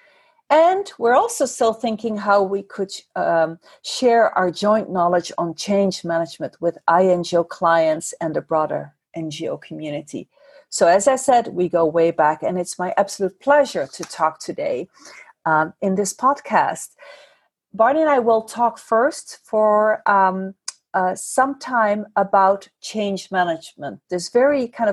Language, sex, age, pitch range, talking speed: English, female, 40-59, 175-235 Hz, 145 wpm